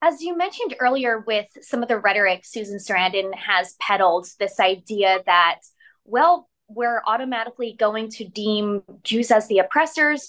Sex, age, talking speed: female, 20-39, 150 wpm